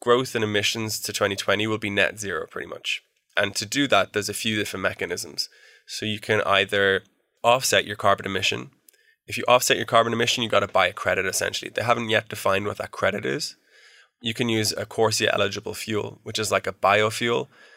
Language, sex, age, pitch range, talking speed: English, male, 20-39, 100-115 Hz, 205 wpm